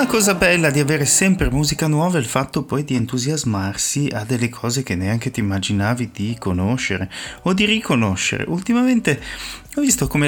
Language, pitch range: Italian, 105-145 Hz